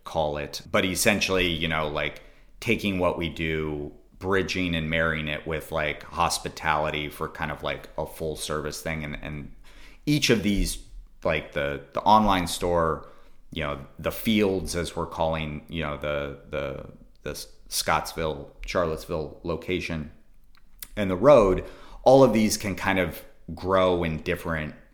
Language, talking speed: English, 150 wpm